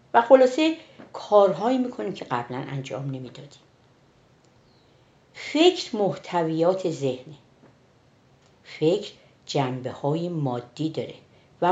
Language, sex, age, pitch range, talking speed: Persian, female, 60-79, 130-185 Hz, 85 wpm